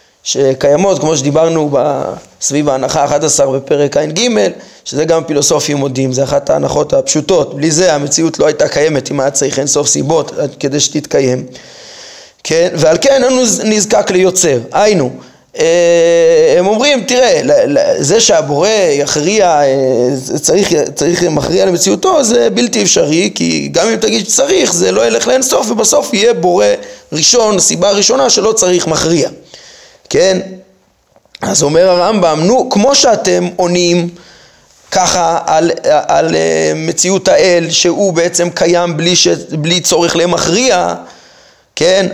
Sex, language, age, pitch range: male, Hebrew, 20-39, 160-235 Hz